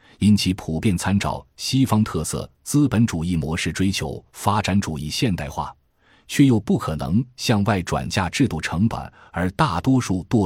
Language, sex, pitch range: Chinese, male, 80-115 Hz